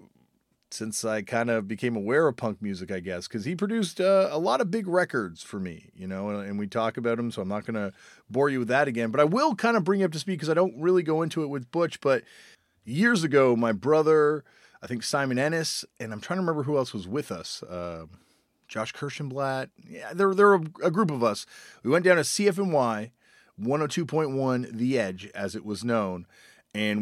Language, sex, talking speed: English, male, 225 wpm